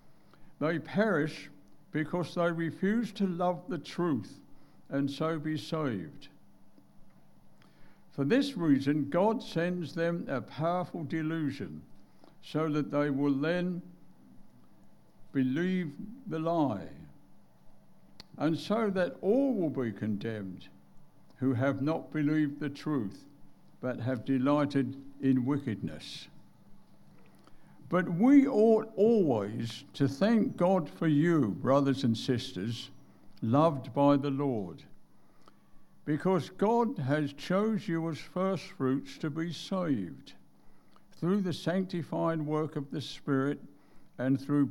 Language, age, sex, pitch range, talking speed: English, 60-79, male, 135-175 Hz, 110 wpm